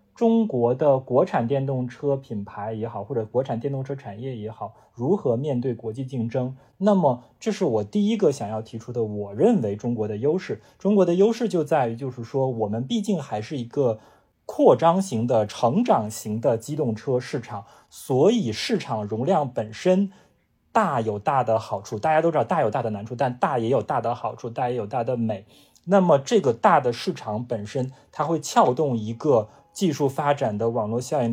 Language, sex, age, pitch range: Chinese, male, 20-39, 115-160 Hz